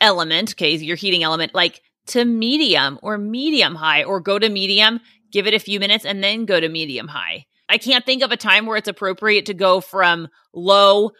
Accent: American